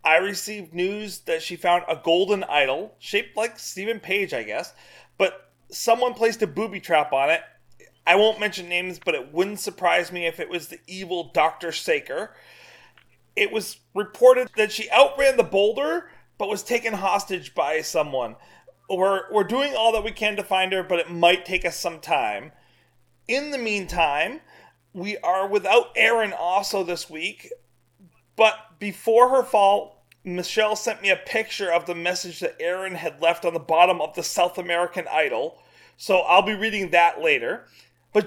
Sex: male